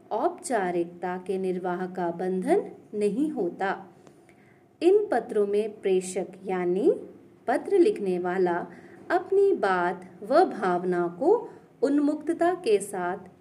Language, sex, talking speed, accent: English, female, 105 wpm, Indian